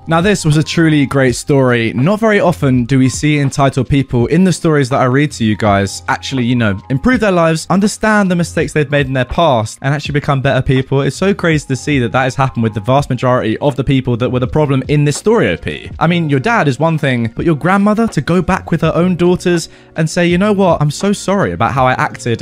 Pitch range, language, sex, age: 125-160 Hz, English, male, 20-39